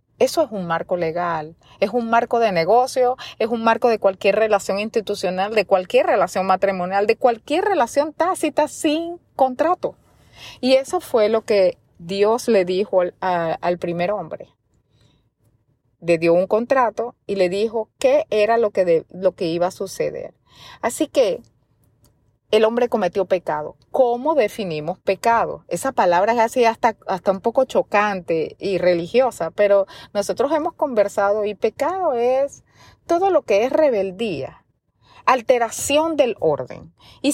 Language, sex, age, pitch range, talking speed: Spanish, female, 30-49, 185-255 Hz, 145 wpm